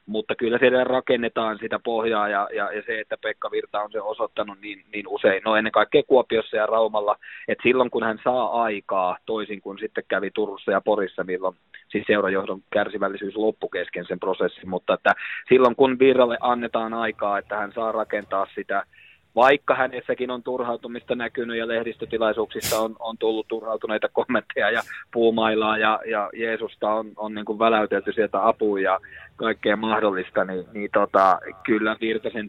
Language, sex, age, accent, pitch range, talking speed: Finnish, male, 20-39, native, 105-115 Hz, 165 wpm